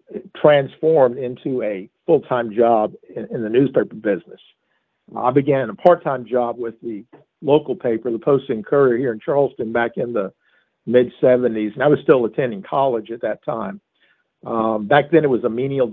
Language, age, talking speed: English, 50-69, 175 wpm